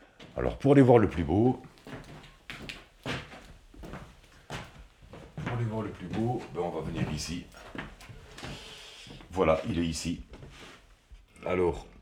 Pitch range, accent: 85-115 Hz, French